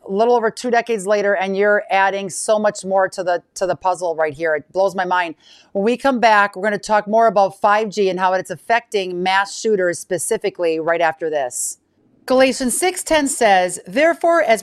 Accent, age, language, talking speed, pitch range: American, 50-69, English, 200 wpm, 200-260 Hz